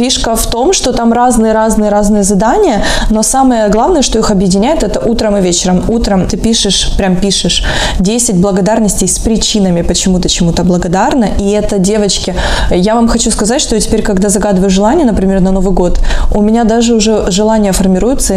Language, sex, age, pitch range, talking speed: Russian, female, 20-39, 190-225 Hz, 170 wpm